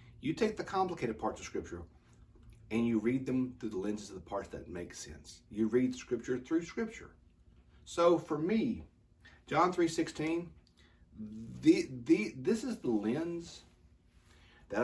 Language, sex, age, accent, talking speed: English, male, 40-59, American, 150 wpm